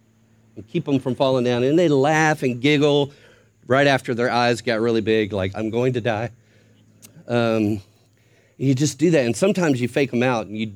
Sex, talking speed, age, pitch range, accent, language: male, 200 wpm, 40-59, 105-145 Hz, American, English